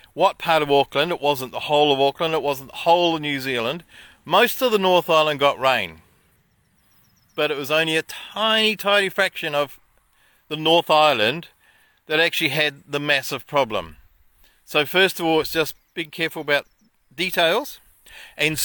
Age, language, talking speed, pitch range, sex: 50-69, English, 170 wpm, 145-185 Hz, male